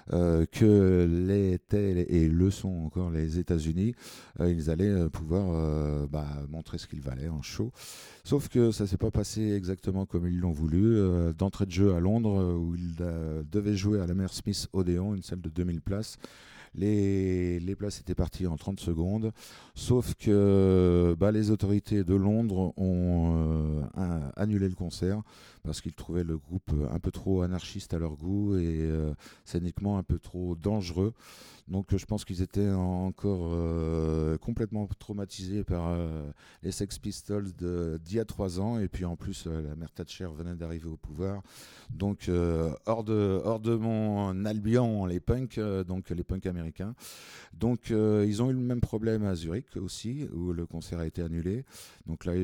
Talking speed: 180 wpm